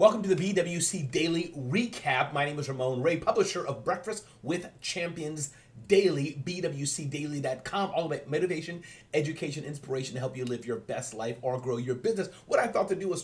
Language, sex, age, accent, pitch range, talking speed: English, male, 30-49, American, 125-165 Hz, 180 wpm